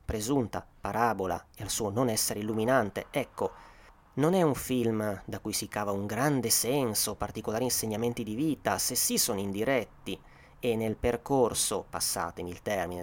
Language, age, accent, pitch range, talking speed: Italian, 30-49, native, 95-130 Hz, 155 wpm